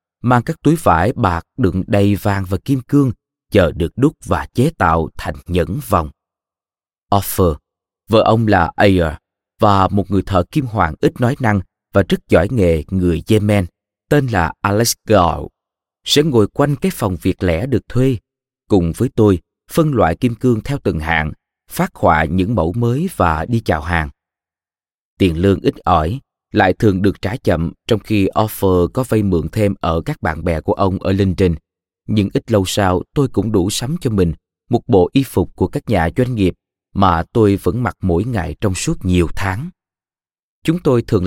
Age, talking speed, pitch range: 20-39, 185 wpm, 90-115 Hz